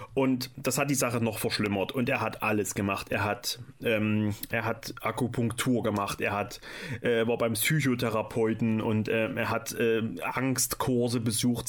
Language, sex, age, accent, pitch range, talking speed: German, male, 30-49, German, 115-135 Hz, 165 wpm